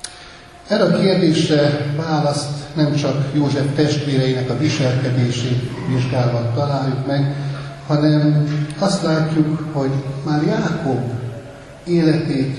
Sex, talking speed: male, 95 wpm